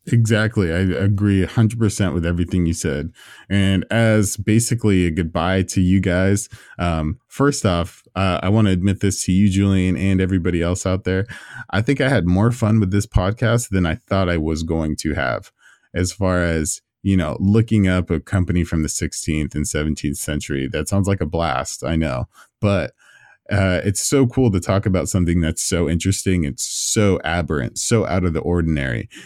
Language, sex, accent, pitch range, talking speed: English, male, American, 85-105 Hz, 190 wpm